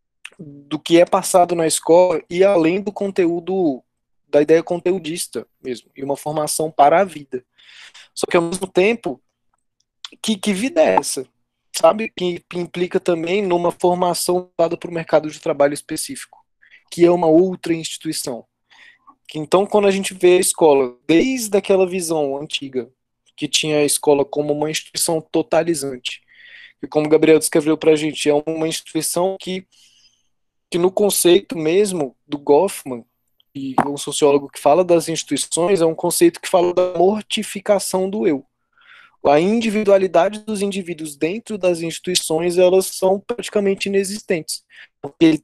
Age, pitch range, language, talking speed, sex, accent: 20-39, 155-195 Hz, Portuguese, 150 wpm, male, Brazilian